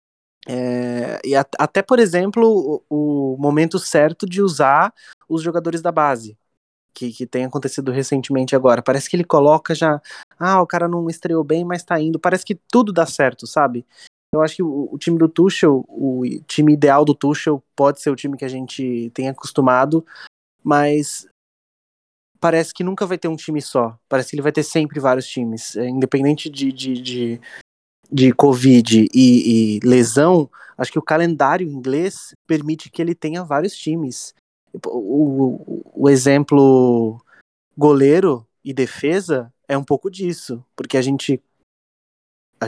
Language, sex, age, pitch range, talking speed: Portuguese, male, 20-39, 130-160 Hz, 155 wpm